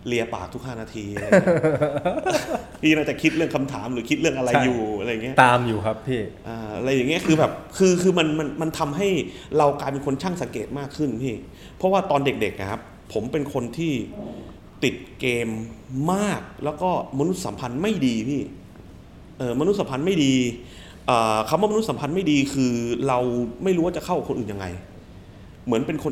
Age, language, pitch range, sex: 30-49, Thai, 115-150 Hz, male